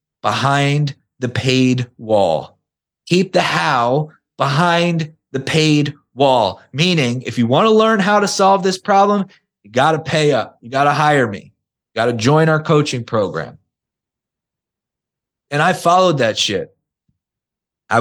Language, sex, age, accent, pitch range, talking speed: English, male, 30-49, American, 130-170 Hz, 150 wpm